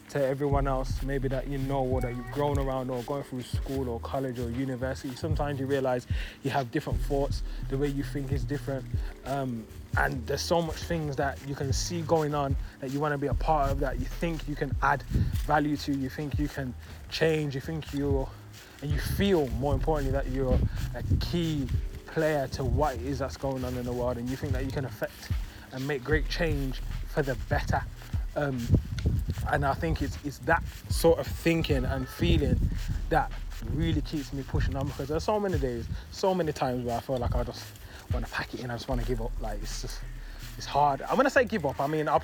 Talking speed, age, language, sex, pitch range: 230 wpm, 20-39, English, male, 120-150 Hz